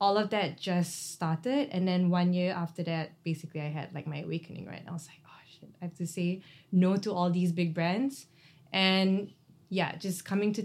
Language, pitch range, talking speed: English, 160-185 Hz, 220 wpm